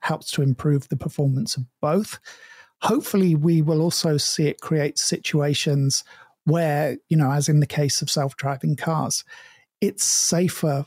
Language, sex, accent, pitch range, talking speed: English, male, British, 145-170 Hz, 150 wpm